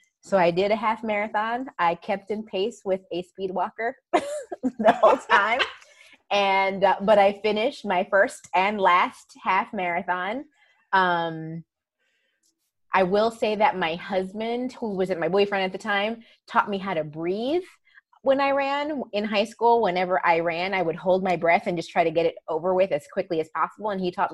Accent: American